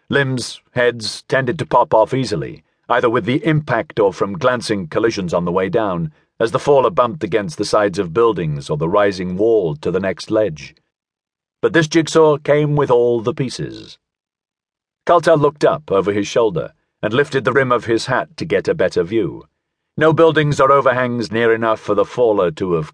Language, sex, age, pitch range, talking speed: English, male, 40-59, 115-155 Hz, 190 wpm